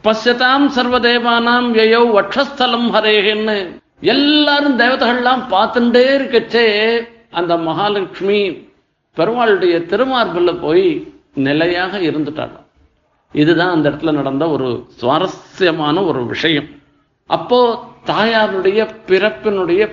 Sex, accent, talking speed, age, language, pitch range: male, native, 80 wpm, 50-69, Tamil, 195-245 Hz